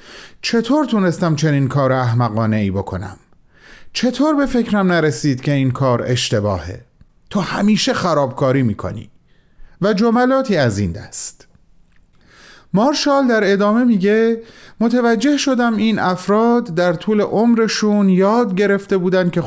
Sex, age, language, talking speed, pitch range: male, 30-49, Persian, 125 wpm, 135-200 Hz